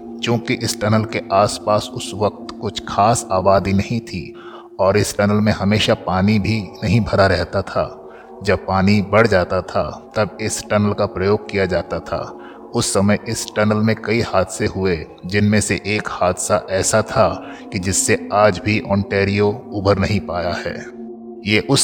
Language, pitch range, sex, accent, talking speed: Hindi, 95-110 Hz, male, native, 170 wpm